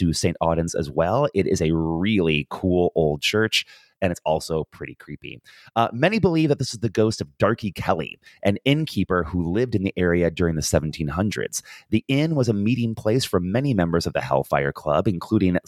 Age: 30-49